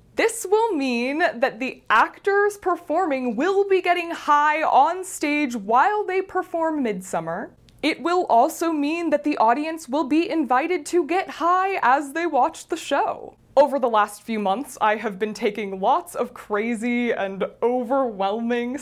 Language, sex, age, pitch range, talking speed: English, female, 20-39, 210-315 Hz, 155 wpm